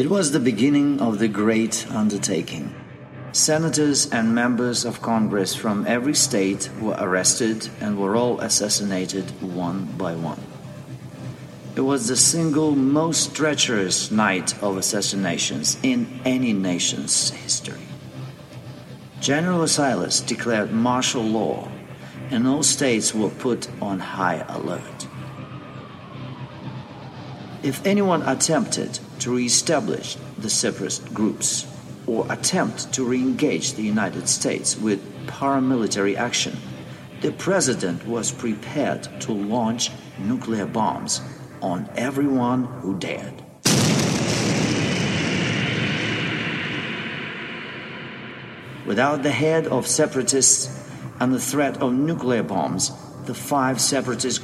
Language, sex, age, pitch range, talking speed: English, male, 40-59, 105-140 Hz, 105 wpm